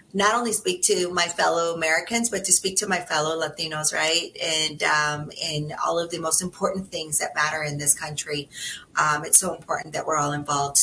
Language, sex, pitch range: English, female, 160-185 Hz